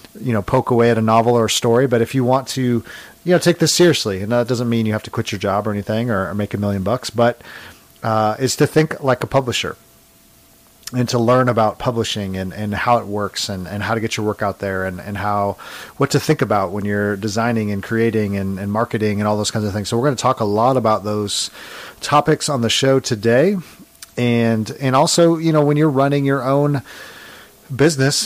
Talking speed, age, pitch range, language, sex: 235 wpm, 40-59, 105-130 Hz, English, male